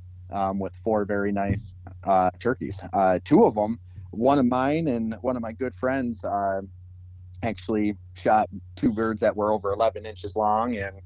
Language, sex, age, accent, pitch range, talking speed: English, male, 30-49, American, 95-115 Hz, 175 wpm